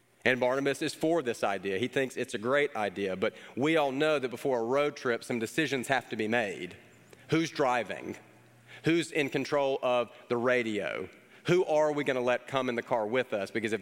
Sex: male